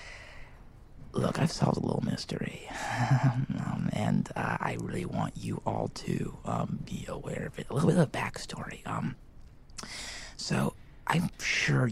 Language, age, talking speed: English, 30-49, 150 wpm